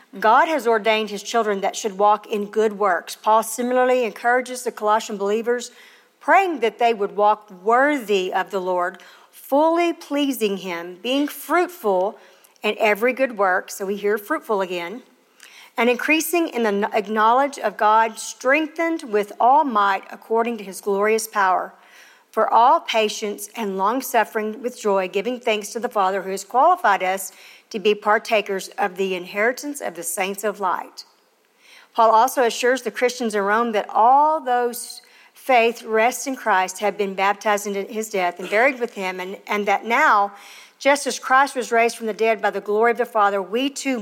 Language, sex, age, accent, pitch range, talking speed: English, female, 50-69, American, 200-250 Hz, 175 wpm